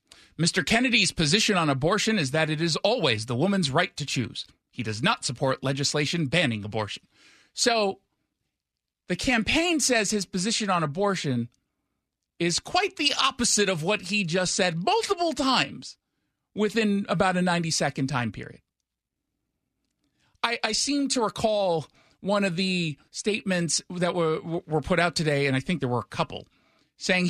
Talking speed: 155 wpm